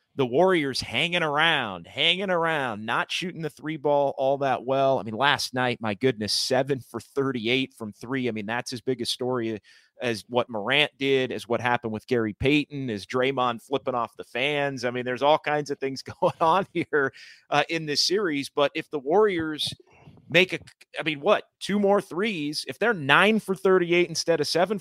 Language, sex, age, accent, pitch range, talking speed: English, male, 30-49, American, 130-165 Hz, 200 wpm